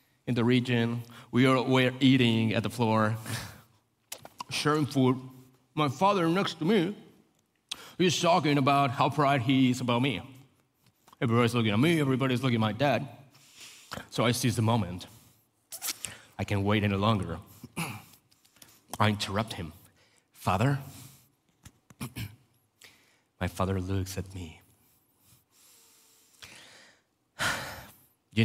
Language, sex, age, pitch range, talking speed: English, male, 30-49, 105-130 Hz, 115 wpm